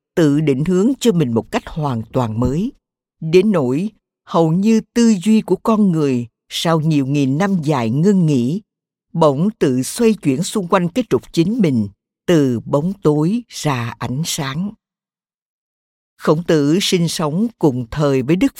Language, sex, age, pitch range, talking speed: Vietnamese, female, 60-79, 140-205 Hz, 160 wpm